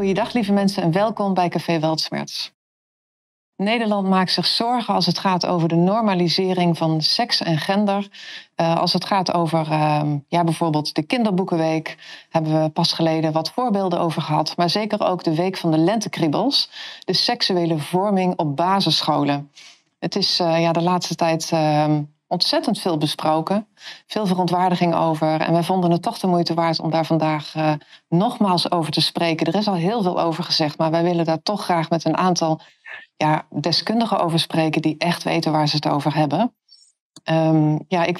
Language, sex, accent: Dutch, female, Dutch